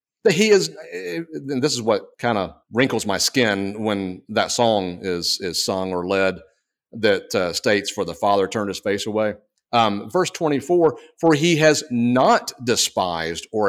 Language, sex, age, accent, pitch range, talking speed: English, male, 40-59, American, 95-140 Hz, 165 wpm